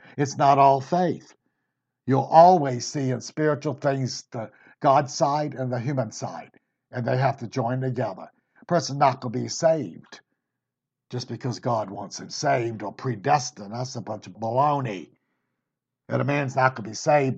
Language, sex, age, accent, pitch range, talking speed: English, male, 60-79, American, 120-145 Hz, 175 wpm